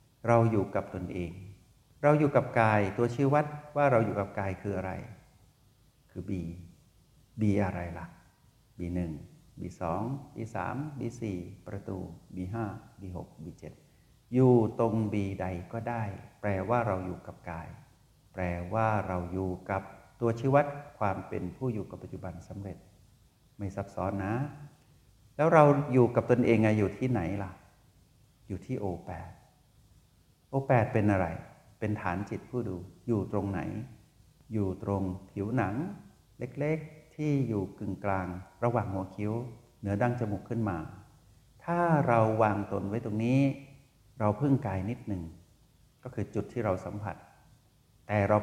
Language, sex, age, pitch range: Thai, male, 60-79, 95-125 Hz